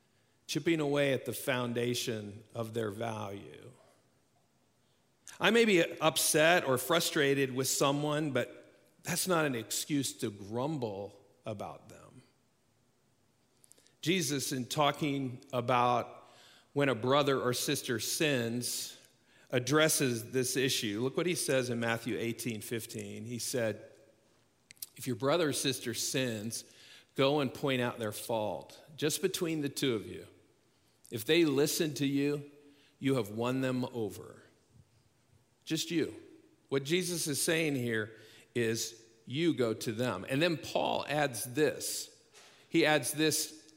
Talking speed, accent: 130 wpm, American